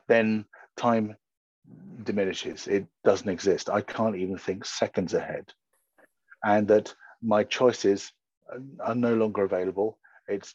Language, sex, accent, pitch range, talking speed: English, male, British, 105-125 Hz, 120 wpm